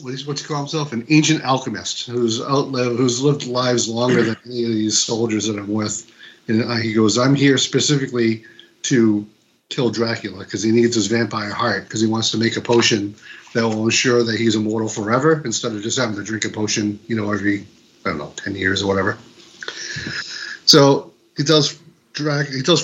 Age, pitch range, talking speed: 40-59, 110-130 Hz, 190 wpm